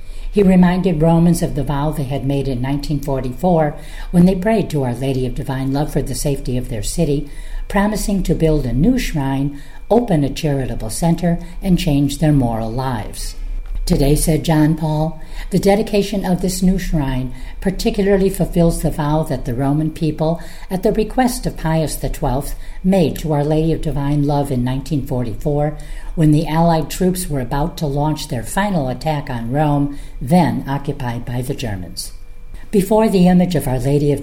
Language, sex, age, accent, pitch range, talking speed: English, female, 50-69, American, 135-170 Hz, 175 wpm